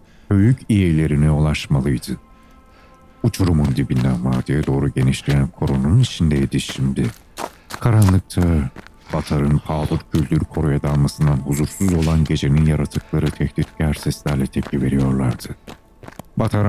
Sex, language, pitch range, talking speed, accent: male, Turkish, 70-90 Hz, 95 wpm, native